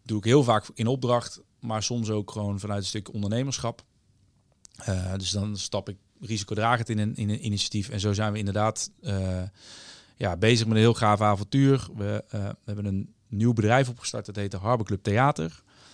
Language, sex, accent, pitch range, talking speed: Dutch, male, Dutch, 105-120 Hz, 190 wpm